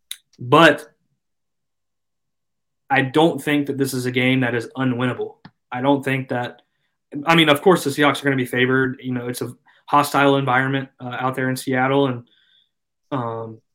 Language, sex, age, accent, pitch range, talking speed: English, male, 20-39, American, 125-145 Hz, 180 wpm